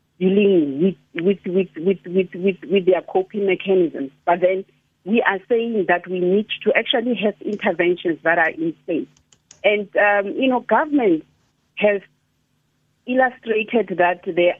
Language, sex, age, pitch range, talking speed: English, female, 50-69, 180-220 Hz, 145 wpm